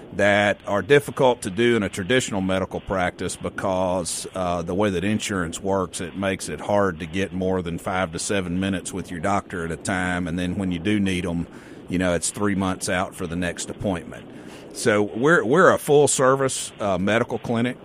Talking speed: 205 wpm